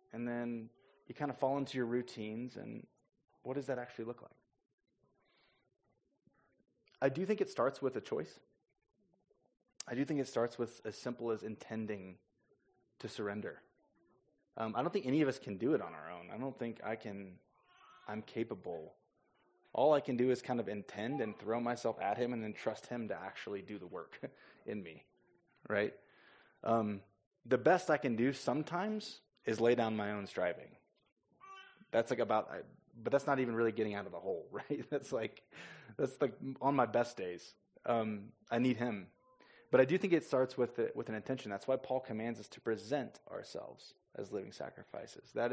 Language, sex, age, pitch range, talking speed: English, male, 20-39, 110-140 Hz, 185 wpm